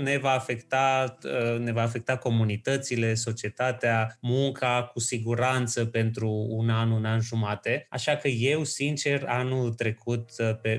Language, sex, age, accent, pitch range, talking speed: Romanian, male, 20-39, native, 115-135 Hz, 135 wpm